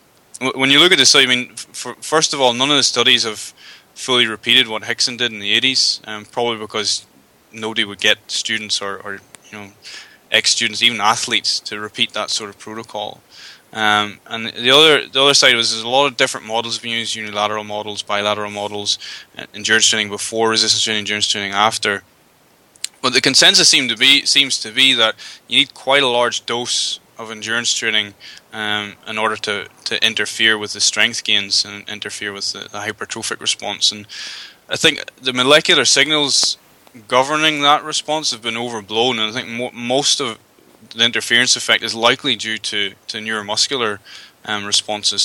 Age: 20-39